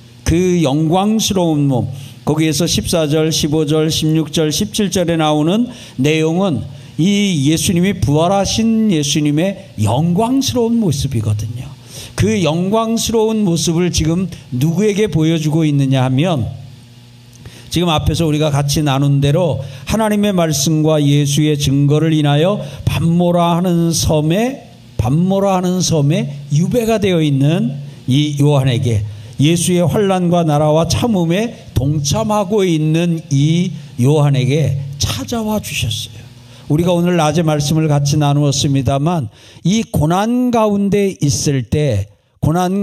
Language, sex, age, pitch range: Korean, male, 50-69, 140-180 Hz